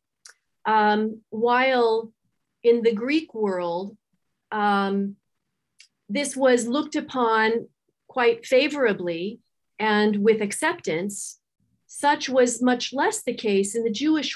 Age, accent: 40-59, American